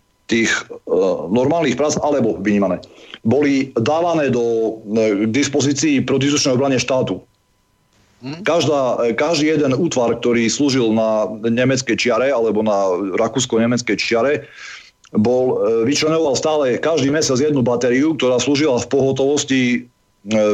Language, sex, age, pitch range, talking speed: Slovak, male, 40-59, 115-140 Hz, 115 wpm